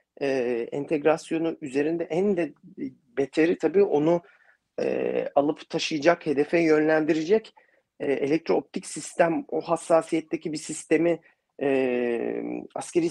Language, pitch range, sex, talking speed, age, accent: Turkish, 140-195 Hz, male, 105 wpm, 40-59, native